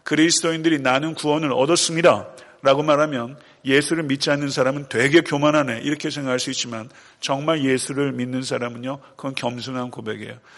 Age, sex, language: 40-59, male, Korean